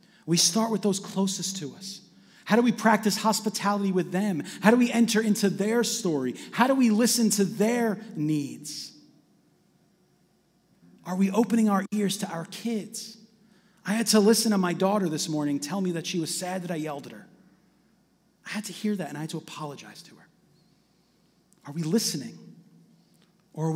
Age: 30-49